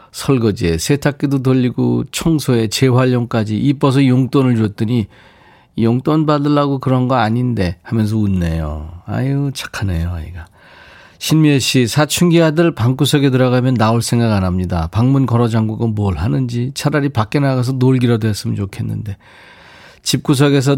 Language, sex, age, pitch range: Korean, male, 40-59, 105-140 Hz